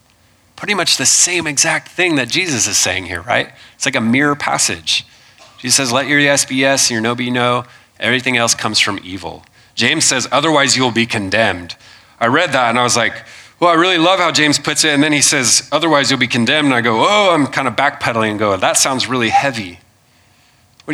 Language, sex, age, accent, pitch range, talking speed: English, male, 30-49, American, 105-125 Hz, 225 wpm